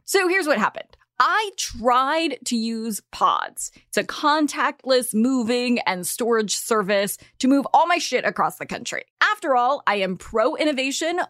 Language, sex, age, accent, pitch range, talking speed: English, female, 20-39, American, 200-285 Hz, 155 wpm